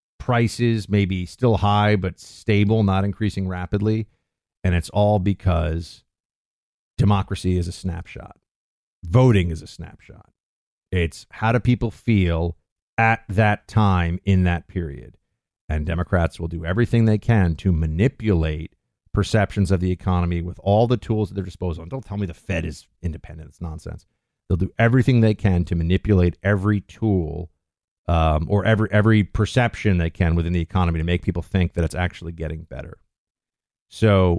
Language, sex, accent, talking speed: English, male, American, 160 wpm